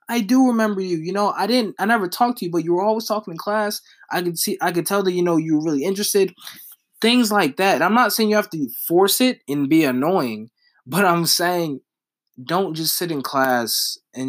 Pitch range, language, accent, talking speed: 135-190 Hz, English, American, 235 wpm